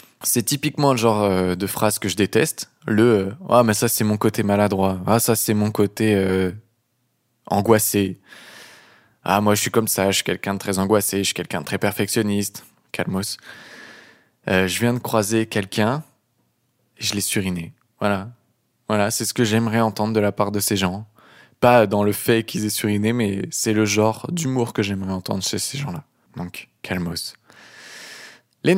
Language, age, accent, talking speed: French, 20-39, French, 190 wpm